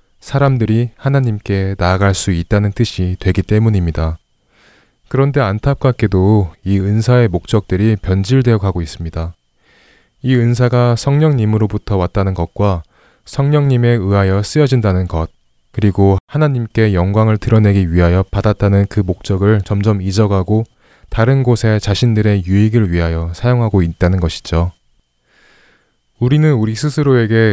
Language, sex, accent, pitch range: Korean, male, native, 90-115 Hz